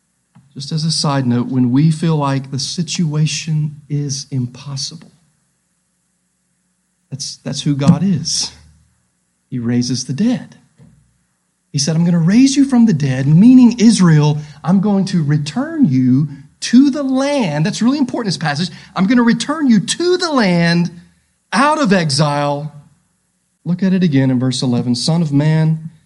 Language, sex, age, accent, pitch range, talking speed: English, male, 40-59, American, 135-185 Hz, 160 wpm